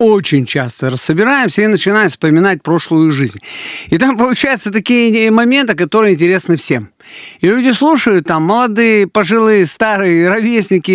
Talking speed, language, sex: 130 wpm, Russian, male